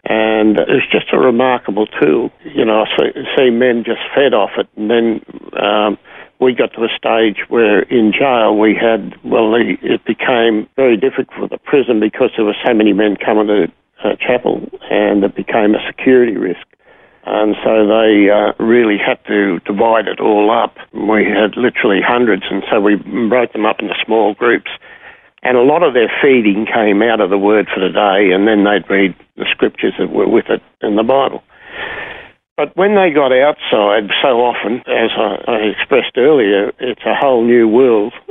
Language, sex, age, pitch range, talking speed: English, male, 60-79, 105-115 Hz, 185 wpm